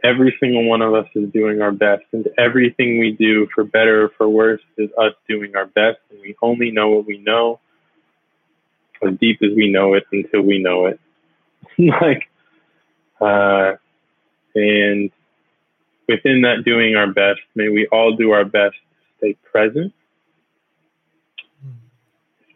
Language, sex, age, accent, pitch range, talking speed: English, male, 20-39, American, 100-115 Hz, 155 wpm